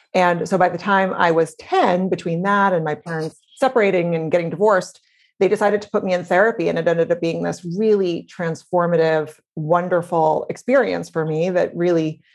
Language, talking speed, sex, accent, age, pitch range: English, 185 wpm, female, American, 30-49, 165-205 Hz